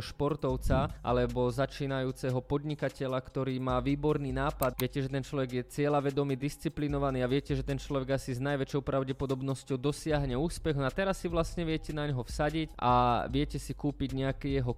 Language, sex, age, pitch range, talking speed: Slovak, male, 20-39, 130-150 Hz, 160 wpm